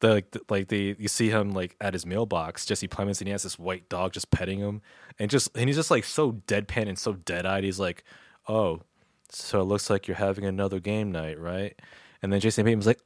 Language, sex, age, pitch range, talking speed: English, male, 20-39, 95-120 Hz, 245 wpm